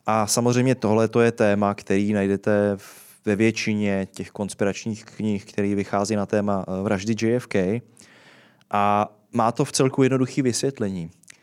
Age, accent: 20-39, native